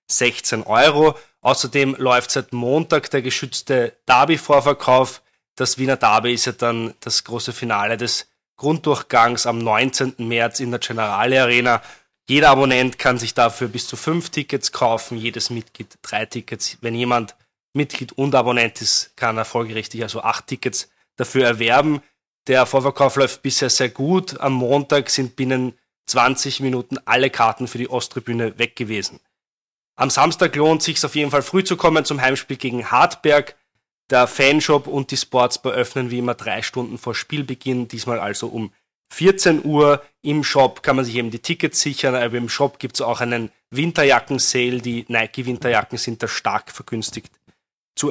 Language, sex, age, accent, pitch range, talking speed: German, male, 20-39, German, 120-140 Hz, 160 wpm